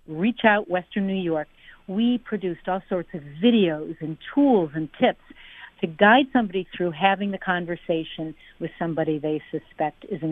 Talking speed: 165 wpm